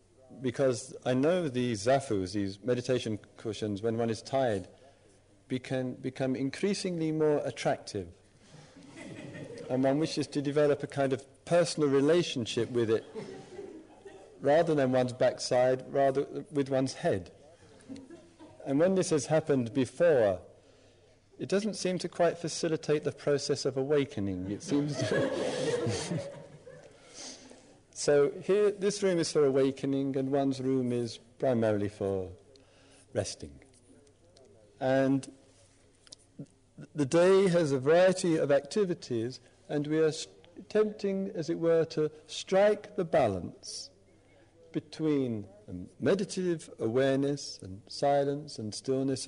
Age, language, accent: 40-59, English, British